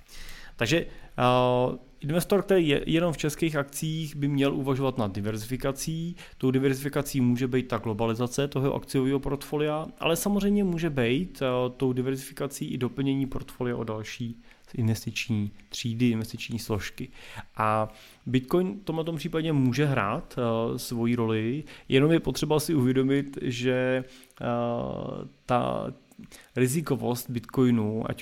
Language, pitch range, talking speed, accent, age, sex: Czech, 110-135 Hz, 130 wpm, native, 30-49, male